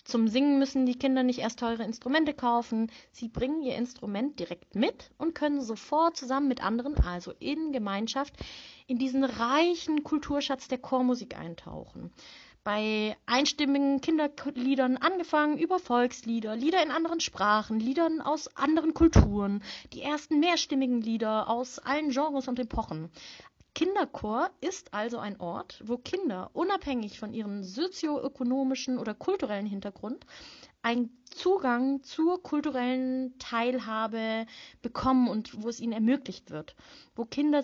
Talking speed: 130 wpm